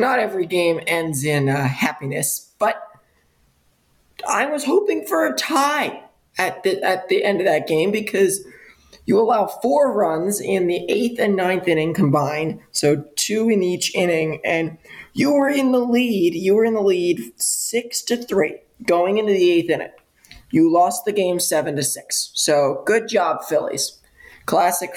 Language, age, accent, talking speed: English, 20-39, American, 170 wpm